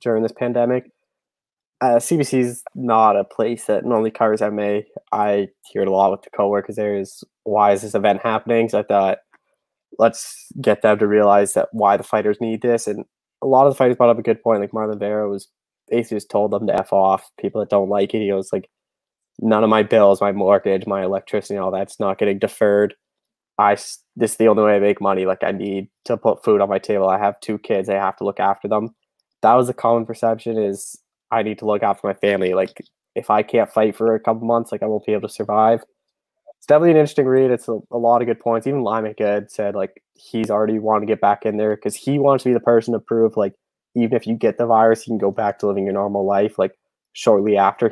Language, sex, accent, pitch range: English, male, American, 100-115 Hz